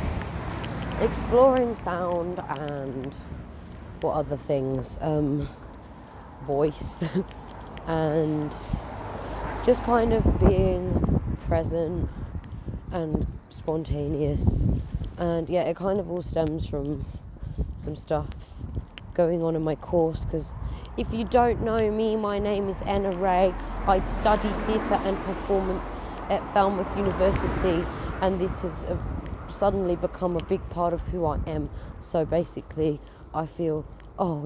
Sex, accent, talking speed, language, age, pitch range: female, British, 120 wpm, English, 20-39, 145-185 Hz